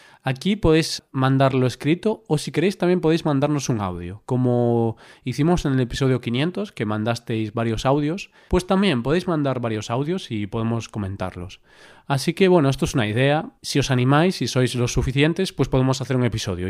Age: 20-39